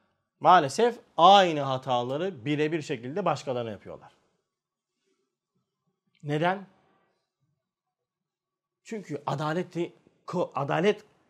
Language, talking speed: Turkish, 60 wpm